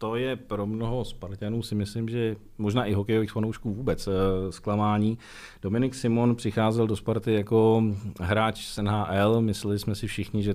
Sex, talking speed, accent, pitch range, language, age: male, 160 wpm, native, 95-110 Hz, Czech, 40-59